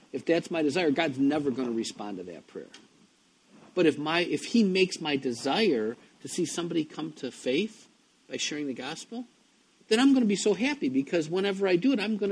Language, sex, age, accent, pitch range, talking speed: English, male, 50-69, American, 155-230 Hz, 215 wpm